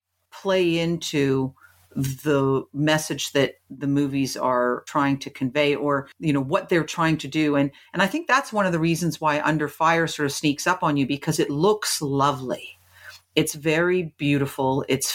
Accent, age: American, 40-59